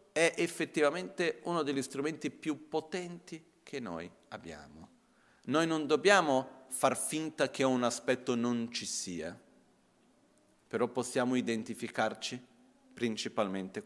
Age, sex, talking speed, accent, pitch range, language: 40-59, male, 110 wpm, native, 110-145 Hz, Italian